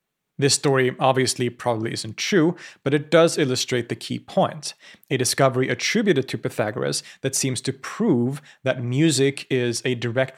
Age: 30-49